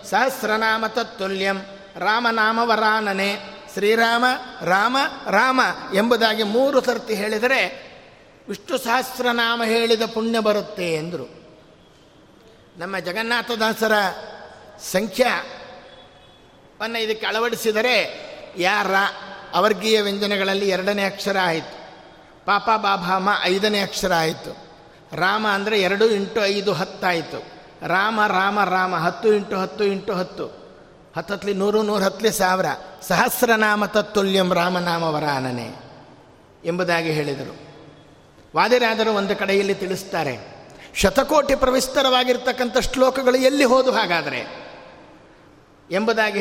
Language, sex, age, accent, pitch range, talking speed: Kannada, male, 50-69, native, 190-240 Hz, 90 wpm